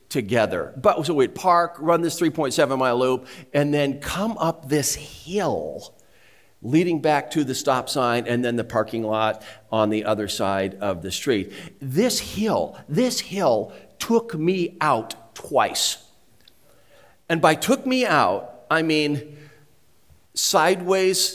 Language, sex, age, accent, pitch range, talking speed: English, male, 50-69, American, 135-195 Hz, 140 wpm